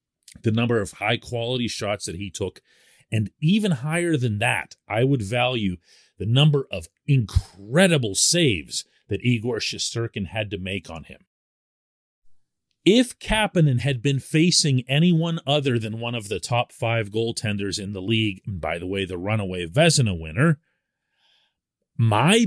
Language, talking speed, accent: English, 145 wpm, American